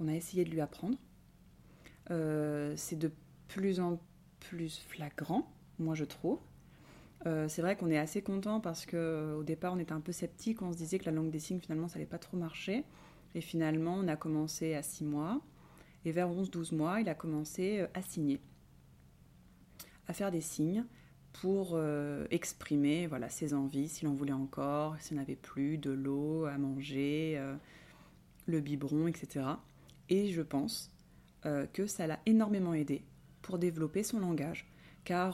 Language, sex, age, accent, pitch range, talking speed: French, female, 30-49, French, 150-185 Hz, 170 wpm